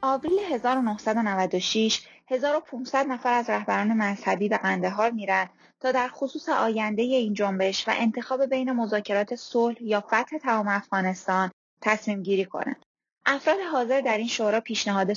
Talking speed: 135 wpm